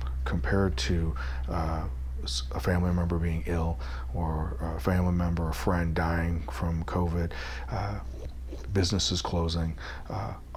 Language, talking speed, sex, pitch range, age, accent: English, 120 wpm, male, 80-90 Hz, 40-59, American